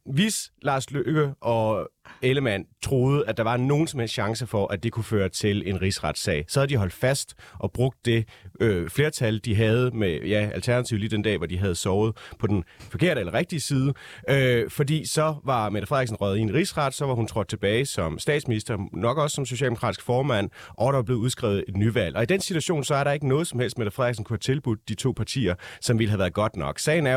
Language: Danish